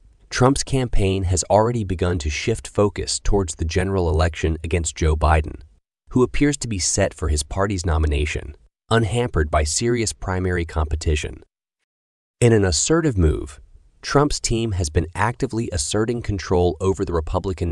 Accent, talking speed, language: American, 145 wpm, English